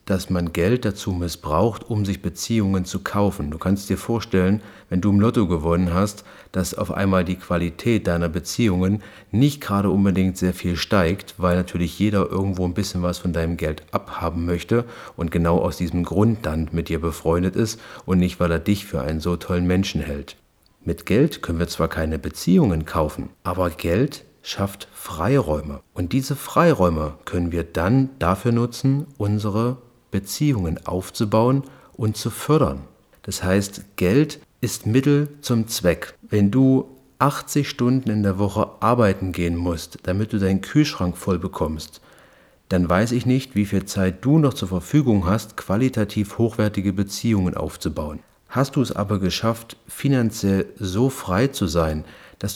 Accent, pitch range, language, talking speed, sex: German, 85-115 Hz, German, 165 wpm, male